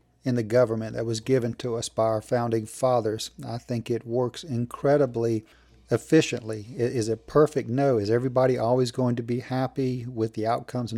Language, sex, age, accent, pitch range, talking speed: English, male, 40-59, American, 115-135 Hz, 180 wpm